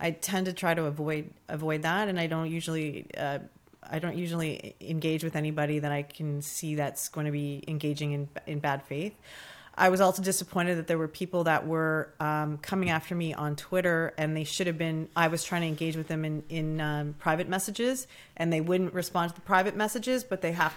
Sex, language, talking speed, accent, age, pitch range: female, English, 220 wpm, American, 30-49, 160-185 Hz